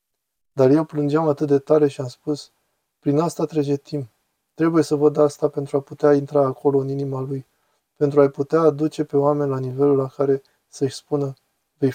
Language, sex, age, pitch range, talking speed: Romanian, male, 20-39, 140-155 Hz, 190 wpm